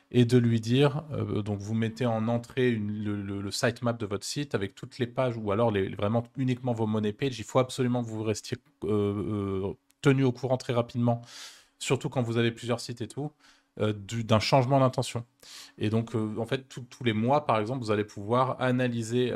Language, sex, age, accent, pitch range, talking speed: French, male, 20-39, French, 105-125 Hz, 210 wpm